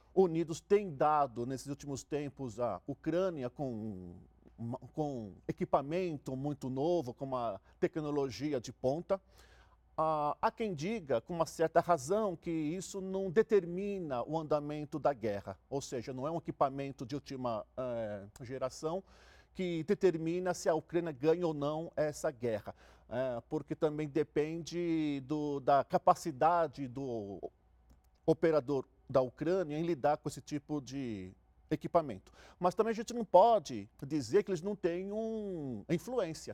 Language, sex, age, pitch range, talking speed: Portuguese, male, 50-69, 130-180 Hz, 140 wpm